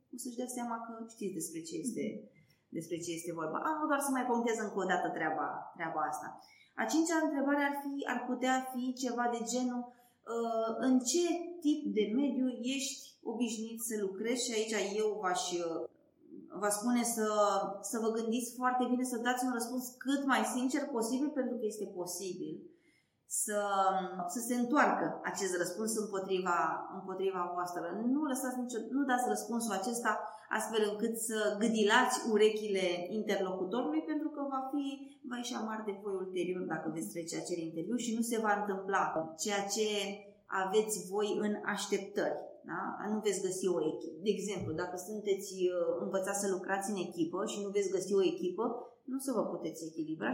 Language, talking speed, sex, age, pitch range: Romanian, 170 wpm, female, 20-39, 190-250 Hz